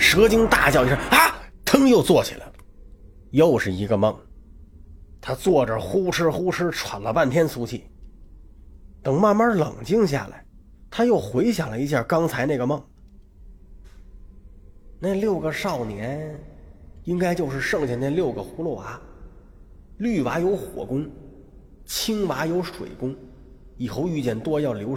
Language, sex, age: Chinese, male, 30-49